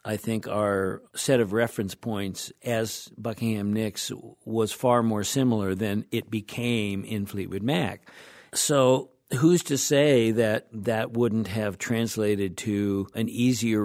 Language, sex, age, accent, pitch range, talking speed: English, male, 50-69, American, 110-130 Hz, 140 wpm